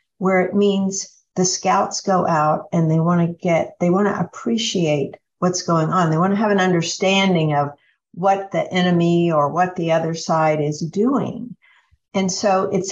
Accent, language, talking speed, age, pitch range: American, English, 180 wpm, 60-79, 165-200 Hz